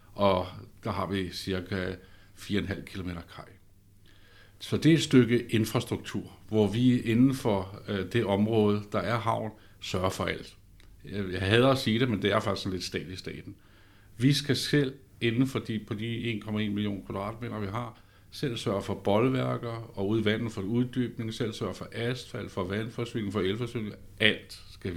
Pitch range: 95-120 Hz